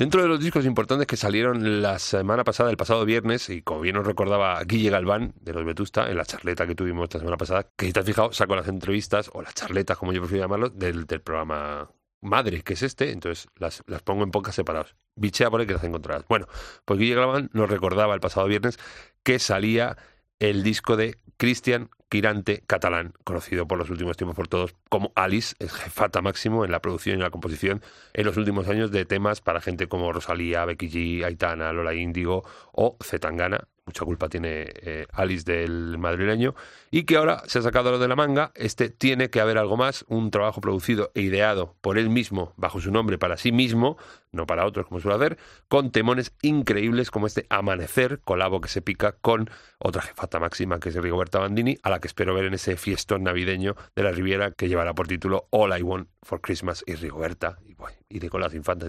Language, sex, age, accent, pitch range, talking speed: Spanish, male, 30-49, Spanish, 90-110 Hz, 210 wpm